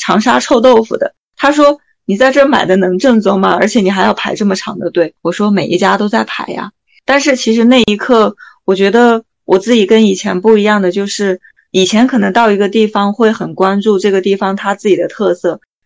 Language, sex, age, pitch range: Chinese, female, 20-39, 190-235 Hz